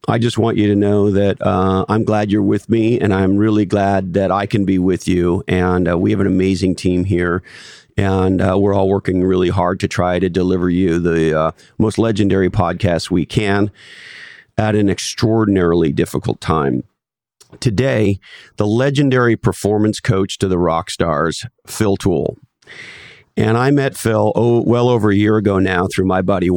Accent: American